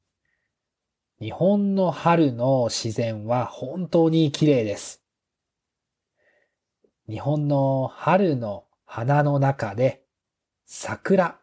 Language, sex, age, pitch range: Japanese, male, 40-59, 125-185 Hz